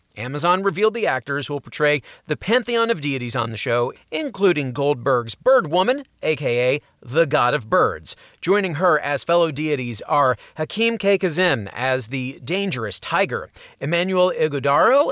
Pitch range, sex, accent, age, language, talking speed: 130-190 Hz, male, American, 40-59, English, 150 wpm